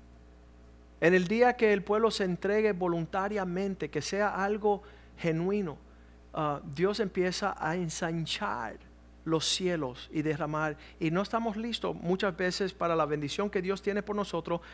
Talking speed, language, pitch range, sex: 145 wpm, Spanish, 130-165 Hz, male